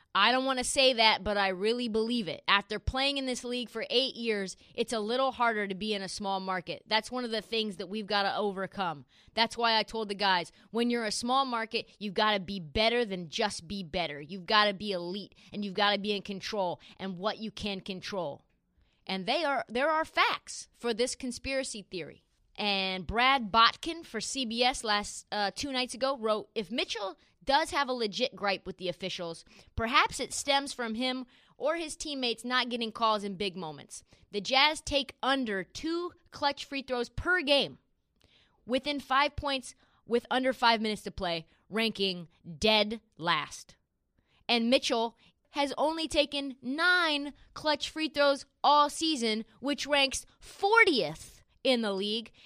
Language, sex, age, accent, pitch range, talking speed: English, female, 20-39, American, 200-270 Hz, 185 wpm